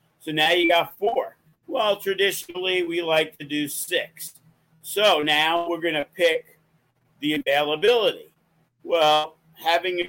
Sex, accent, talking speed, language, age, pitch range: male, American, 130 wpm, English, 50-69, 145-170 Hz